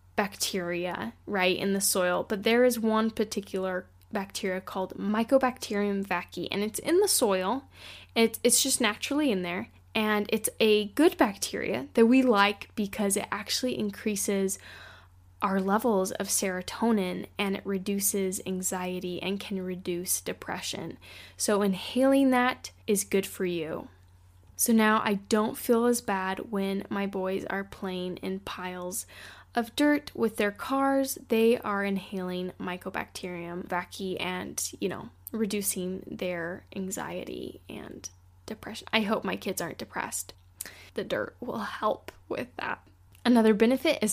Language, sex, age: English, female, 10-29